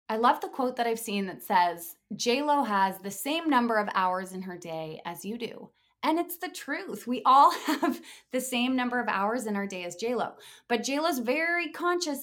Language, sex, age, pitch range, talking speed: English, female, 20-39, 200-250 Hz, 215 wpm